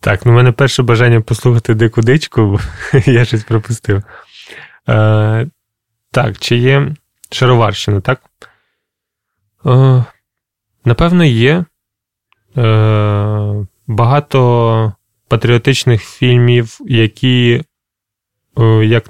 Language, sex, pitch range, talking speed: Ukrainian, male, 105-125 Hz, 85 wpm